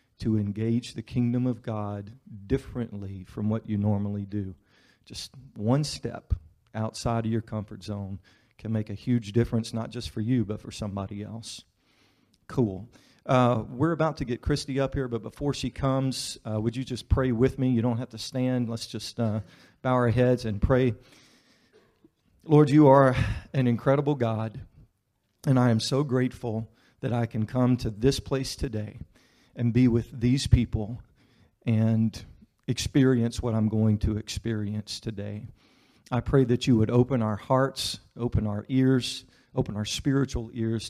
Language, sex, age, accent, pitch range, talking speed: English, male, 40-59, American, 110-130 Hz, 165 wpm